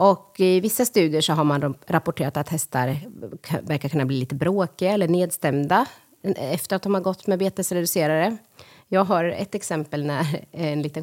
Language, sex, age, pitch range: Swedish, female, 30-49, 150-195 Hz